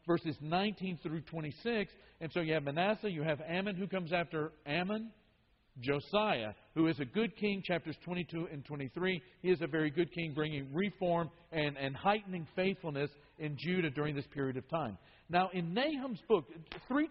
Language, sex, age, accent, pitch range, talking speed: English, male, 50-69, American, 155-205 Hz, 175 wpm